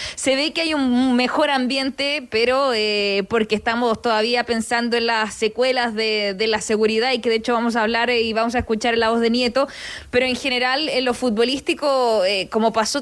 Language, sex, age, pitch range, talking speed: Spanish, female, 20-39, 235-270 Hz, 205 wpm